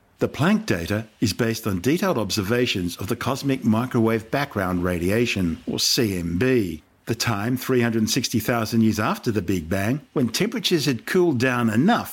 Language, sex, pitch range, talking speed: English, male, 95-125 Hz, 150 wpm